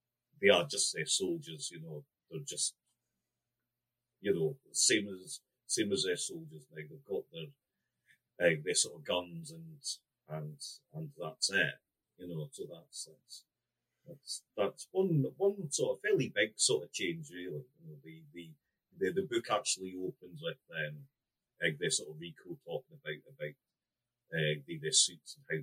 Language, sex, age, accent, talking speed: English, male, 40-59, British, 170 wpm